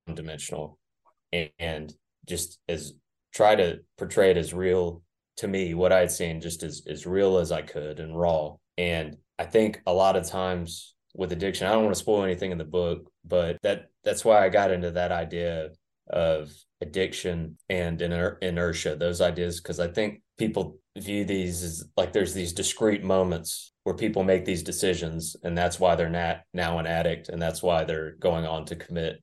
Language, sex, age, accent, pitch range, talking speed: English, male, 20-39, American, 80-90 Hz, 190 wpm